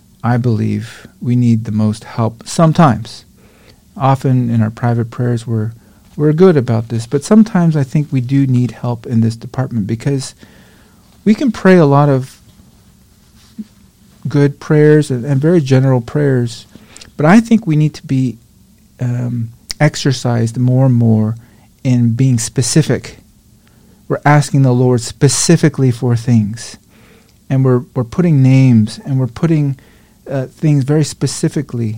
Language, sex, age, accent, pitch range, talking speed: English, male, 40-59, American, 115-145 Hz, 145 wpm